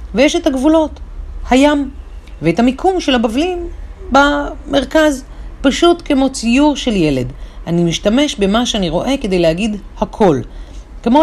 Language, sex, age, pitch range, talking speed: Hebrew, female, 40-59, 150-240 Hz, 125 wpm